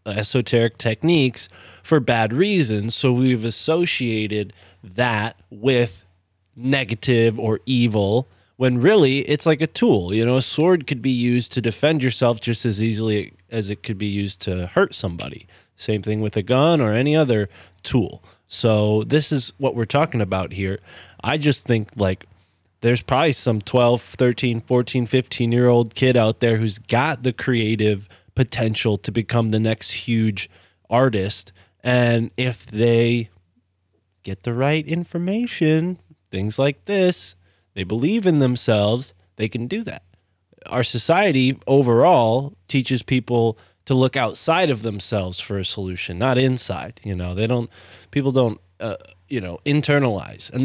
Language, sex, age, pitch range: English, male, 20-39, 100-130 Hz